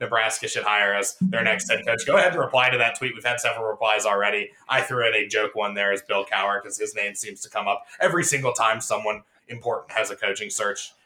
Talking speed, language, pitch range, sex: 250 wpm, English, 105-150 Hz, male